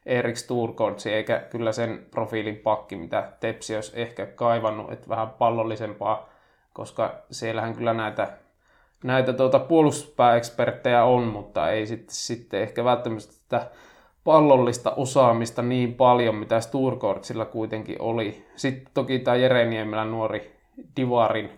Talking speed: 120 wpm